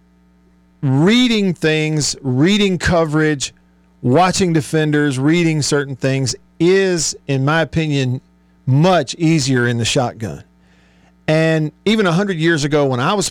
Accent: American